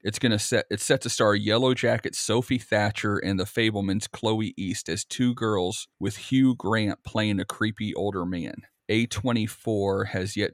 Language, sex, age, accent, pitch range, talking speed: English, male, 40-59, American, 95-110 Hz, 170 wpm